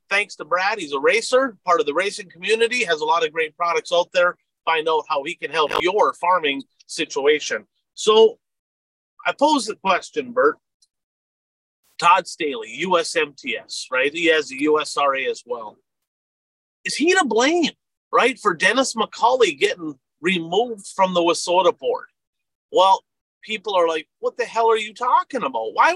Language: English